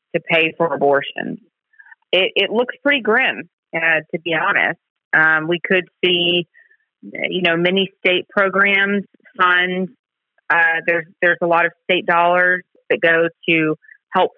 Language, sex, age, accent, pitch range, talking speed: English, female, 30-49, American, 160-180 Hz, 145 wpm